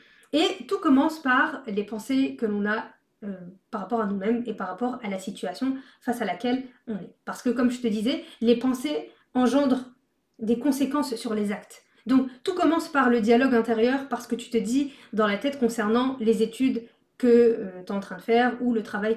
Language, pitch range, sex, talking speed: French, 220-265 Hz, female, 215 wpm